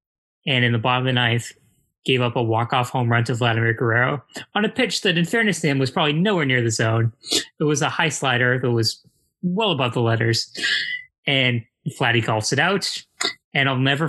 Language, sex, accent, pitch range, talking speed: English, male, American, 120-140 Hz, 210 wpm